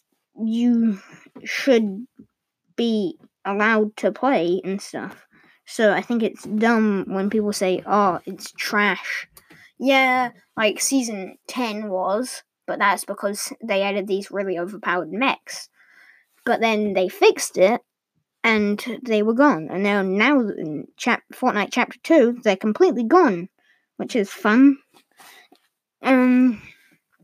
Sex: female